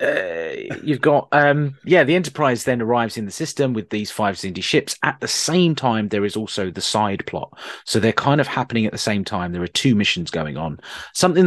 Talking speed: 225 wpm